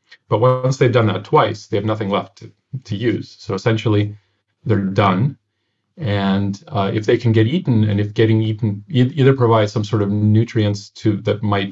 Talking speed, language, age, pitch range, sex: 190 wpm, English, 40-59, 100-115 Hz, male